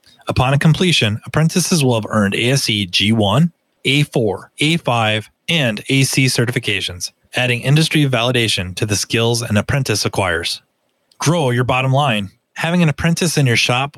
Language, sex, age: English, male, 30-49